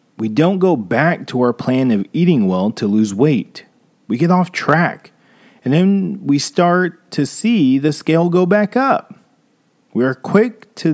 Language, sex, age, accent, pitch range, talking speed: English, male, 40-59, American, 125-200 Hz, 175 wpm